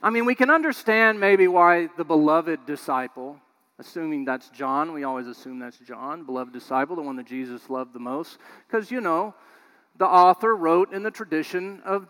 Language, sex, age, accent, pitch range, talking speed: English, male, 40-59, American, 175-265 Hz, 185 wpm